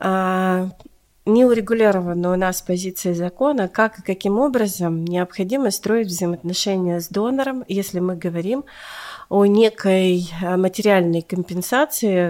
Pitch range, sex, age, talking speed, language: 180-220 Hz, female, 40-59, 105 wpm, Russian